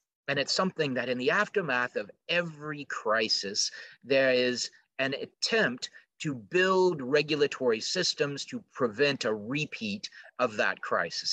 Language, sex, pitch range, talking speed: English, male, 125-185 Hz, 130 wpm